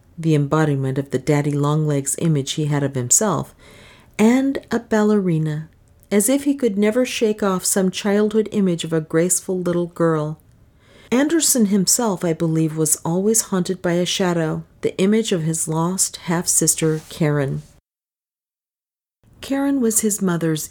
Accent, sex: American, female